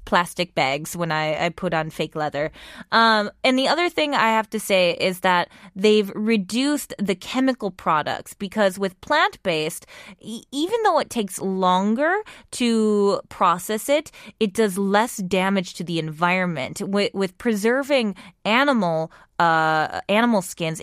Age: 20-39